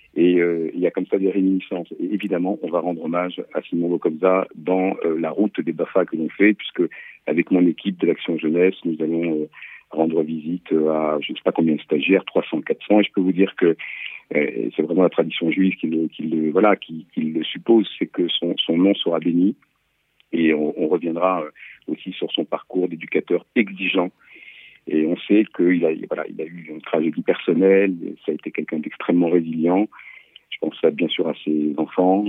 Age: 50-69